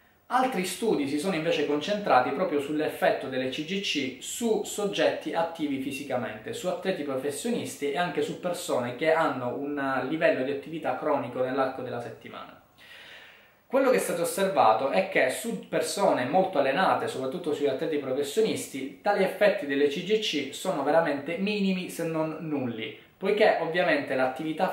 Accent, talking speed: native, 145 wpm